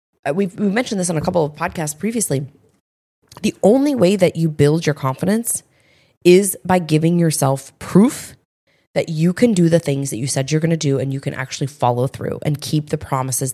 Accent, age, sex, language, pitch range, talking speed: American, 20-39, female, English, 150-200 Hz, 205 wpm